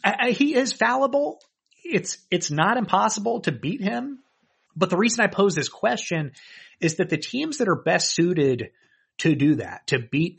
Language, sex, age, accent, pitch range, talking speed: English, male, 30-49, American, 130-170 Hz, 185 wpm